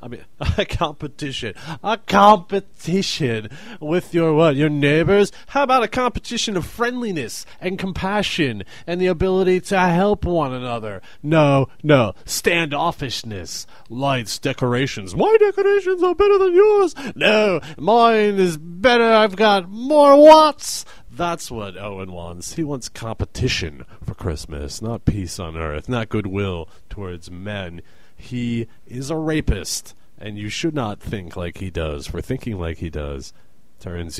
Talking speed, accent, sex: 140 wpm, American, male